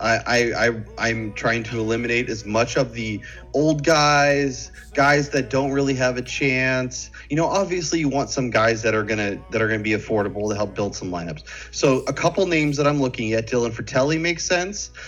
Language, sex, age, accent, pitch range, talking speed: English, male, 30-49, American, 115-145 Hz, 205 wpm